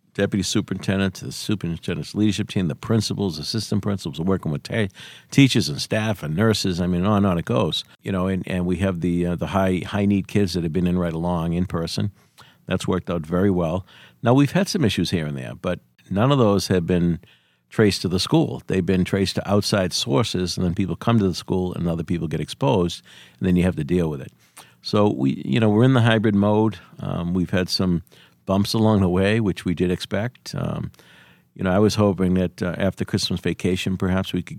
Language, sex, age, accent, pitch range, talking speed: English, male, 50-69, American, 85-100 Hz, 230 wpm